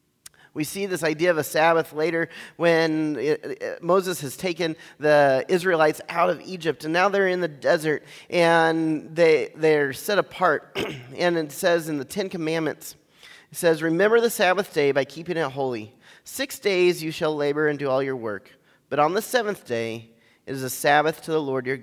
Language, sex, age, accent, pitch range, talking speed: English, male, 30-49, American, 130-175 Hz, 185 wpm